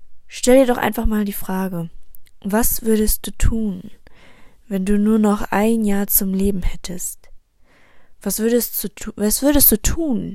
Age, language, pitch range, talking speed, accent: 10-29, German, 165-215 Hz, 160 wpm, German